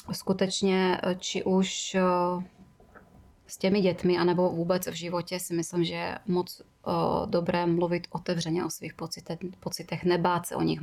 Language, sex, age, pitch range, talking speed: Czech, female, 20-39, 170-185 Hz, 140 wpm